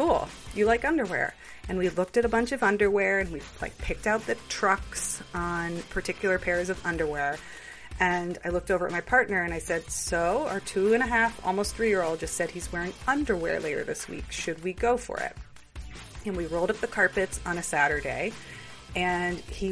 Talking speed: 200 wpm